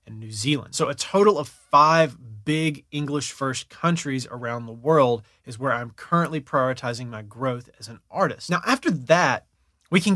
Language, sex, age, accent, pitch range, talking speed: English, male, 20-39, American, 125-155 Hz, 175 wpm